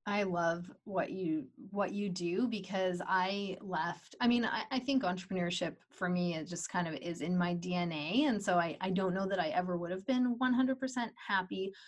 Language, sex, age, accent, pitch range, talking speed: English, female, 20-39, American, 175-210 Hz, 200 wpm